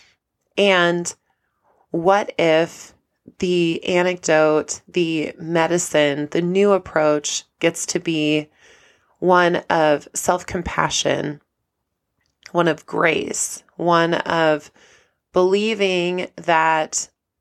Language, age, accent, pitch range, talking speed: English, 20-39, American, 155-190 Hz, 80 wpm